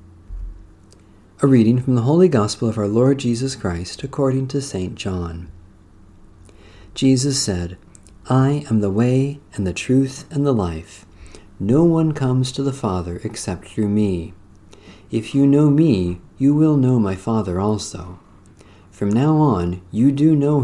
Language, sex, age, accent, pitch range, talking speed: English, male, 50-69, American, 95-130 Hz, 150 wpm